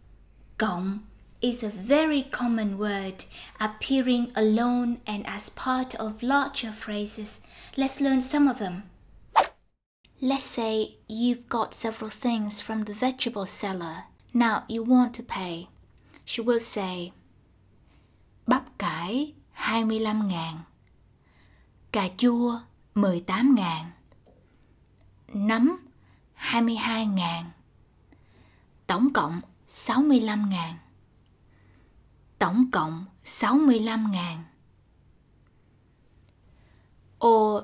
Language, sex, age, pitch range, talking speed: Vietnamese, female, 20-39, 170-235 Hz, 90 wpm